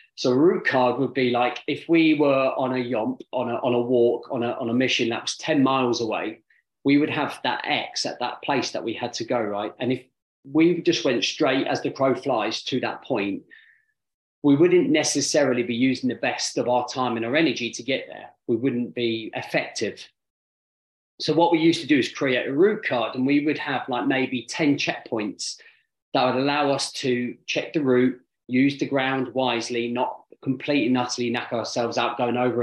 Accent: British